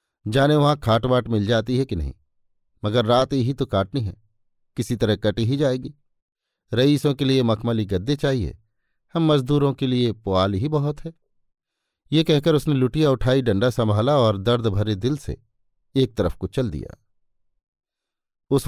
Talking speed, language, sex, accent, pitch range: 165 wpm, Hindi, male, native, 105-130 Hz